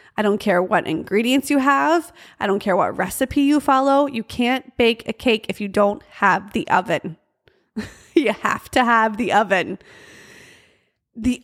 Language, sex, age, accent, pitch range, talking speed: English, female, 20-39, American, 200-255 Hz, 170 wpm